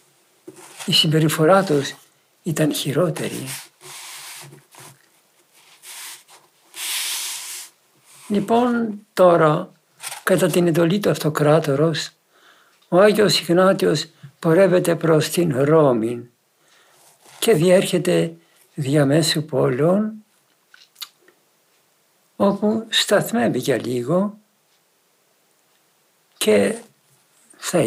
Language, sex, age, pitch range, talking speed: Greek, male, 60-79, 150-190 Hz, 60 wpm